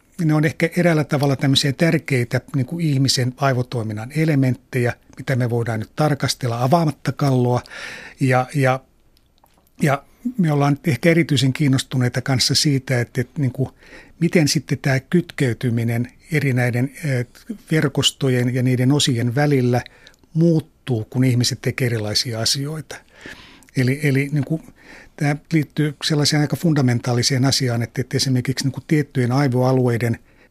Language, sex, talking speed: Finnish, male, 130 wpm